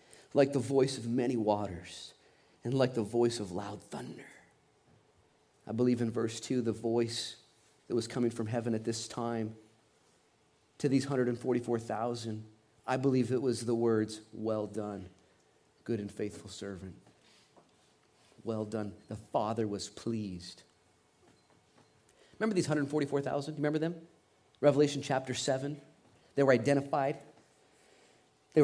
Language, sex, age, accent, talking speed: English, male, 40-59, American, 130 wpm